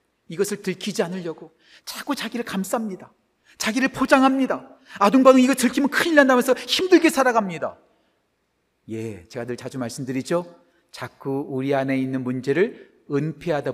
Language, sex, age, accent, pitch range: Korean, male, 40-59, native, 160-240 Hz